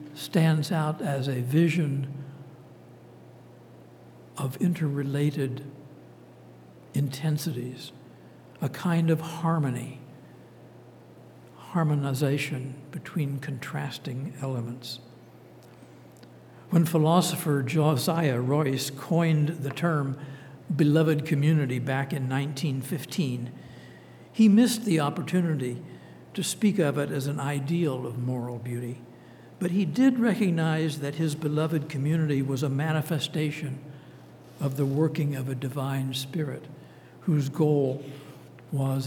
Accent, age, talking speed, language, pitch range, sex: American, 60-79, 95 wpm, English, 130-160 Hz, male